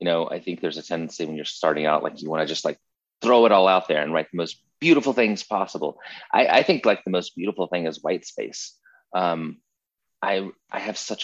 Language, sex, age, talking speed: English, male, 30-49, 235 wpm